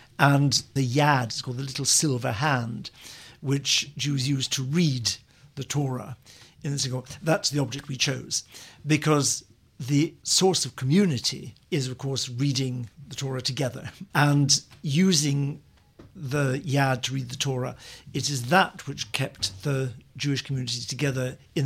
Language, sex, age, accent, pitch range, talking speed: English, male, 50-69, British, 130-145 Hz, 145 wpm